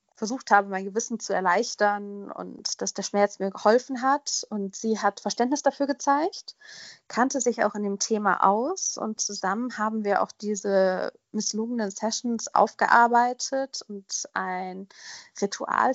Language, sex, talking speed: German, female, 145 wpm